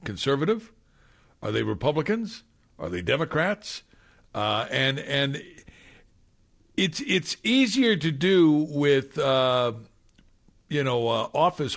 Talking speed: 105 wpm